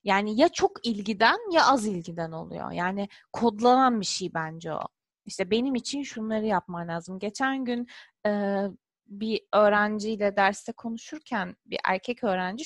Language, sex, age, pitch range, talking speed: Turkish, female, 30-49, 205-260 Hz, 140 wpm